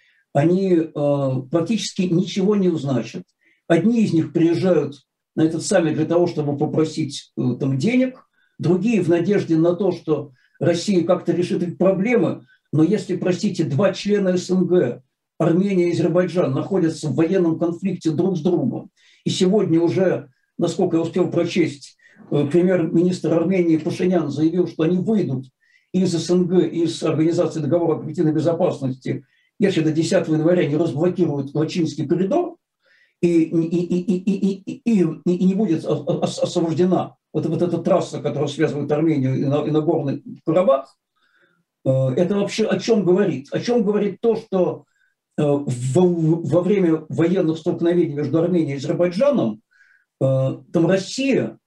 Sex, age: male, 60-79